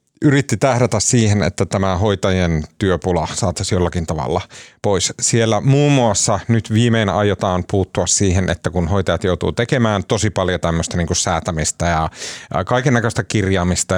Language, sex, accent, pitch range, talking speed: Finnish, male, native, 90-115 Hz, 135 wpm